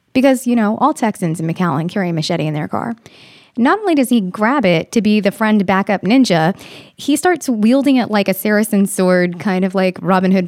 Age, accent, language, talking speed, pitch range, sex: 20-39, American, English, 220 wpm, 185-235 Hz, female